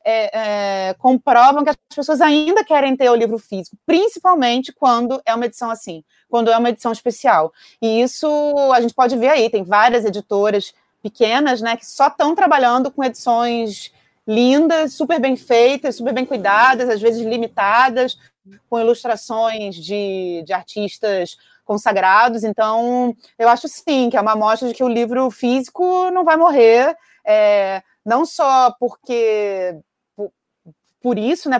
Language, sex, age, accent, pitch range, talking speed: Portuguese, female, 30-49, Brazilian, 210-280 Hz, 145 wpm